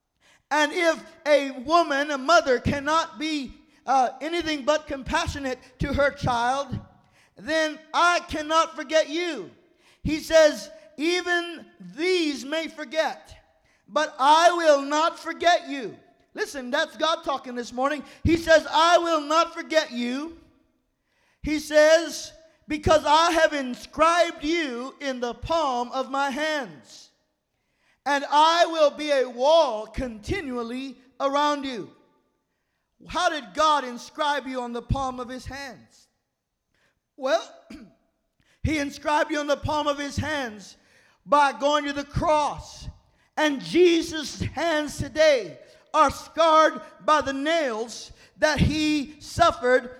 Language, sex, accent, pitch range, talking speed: English, male, American, 275-320 Hz, 125 wpm